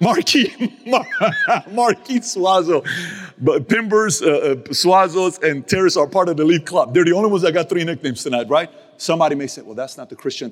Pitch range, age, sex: 145-215 Hz, 40-59, male